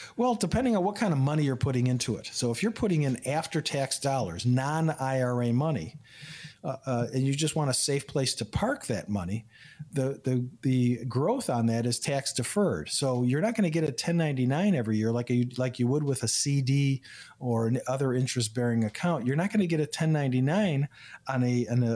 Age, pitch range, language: 50-69, 115-145 Hz, English